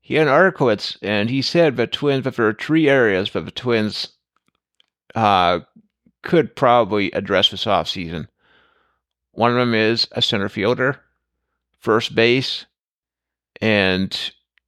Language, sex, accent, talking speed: English, male, American, 135 wpm